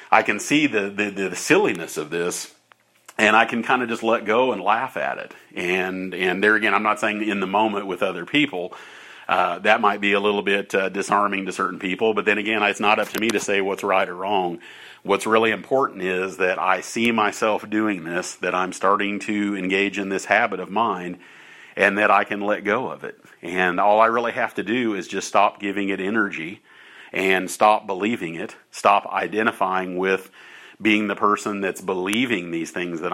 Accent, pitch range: American, 95-110 Hz